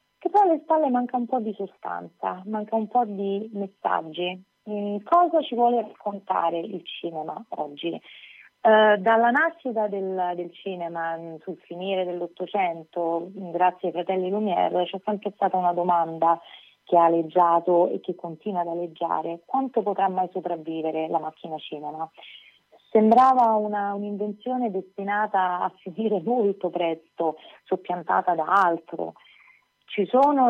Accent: native